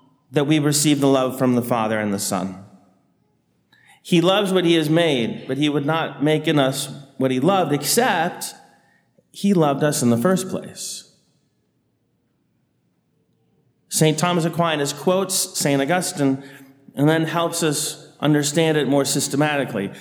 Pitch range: 135-160 Hz